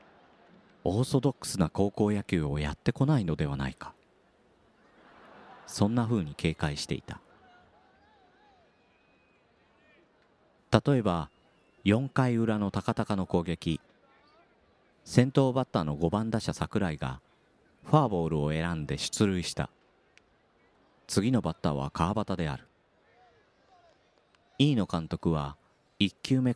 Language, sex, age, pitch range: Japanese, male, 40-59, 80-115 Hz